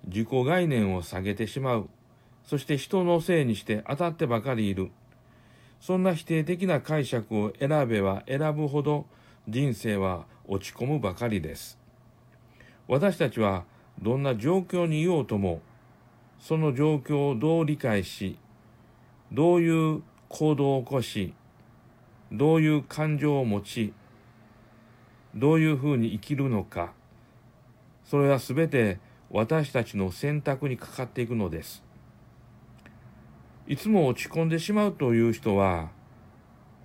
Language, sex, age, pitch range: Japanese, male, 60-79, 110-150 Hz